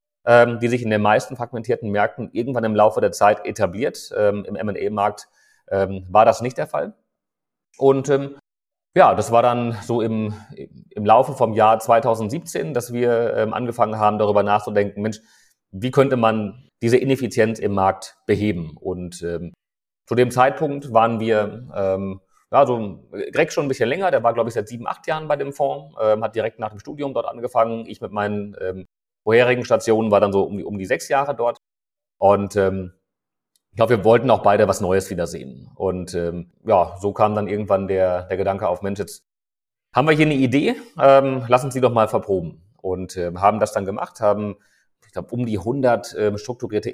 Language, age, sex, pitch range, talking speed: German, 30-49, male, 100-125 Hz, 190 wpm